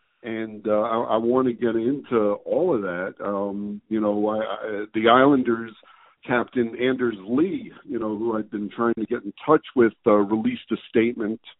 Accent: American